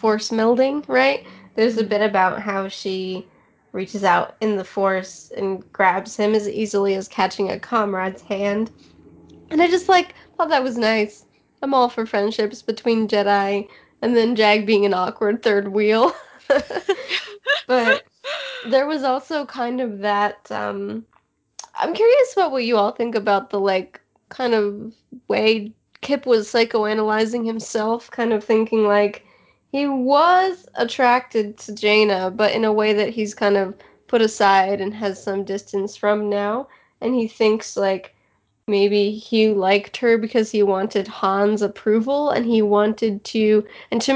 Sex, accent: female, American